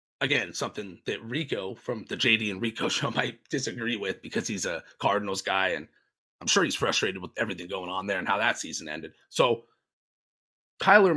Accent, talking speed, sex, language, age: American, 190 wpm, male, English, 30-49